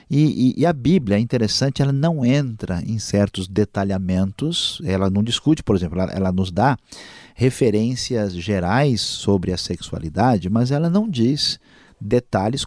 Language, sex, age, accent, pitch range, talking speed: Portuguese, male, 50-69, Brazilian, 100-125 Hz, 150 wpm